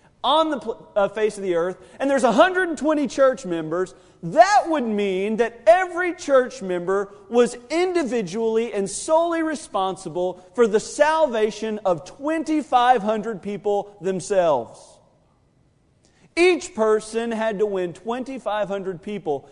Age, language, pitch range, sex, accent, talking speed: 40-59, English, 185-250 Hz, male, American, 115 wpm